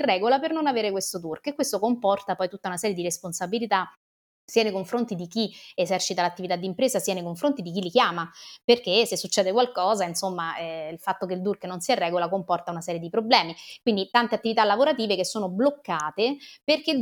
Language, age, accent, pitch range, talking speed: Italian, 30-49, native, 190-235 Hz, 210 wpm